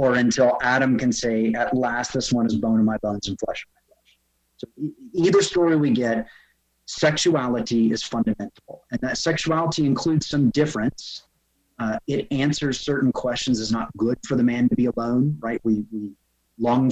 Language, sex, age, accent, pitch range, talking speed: English, male, 30-49, American, 110-140 Hz, 180 wpm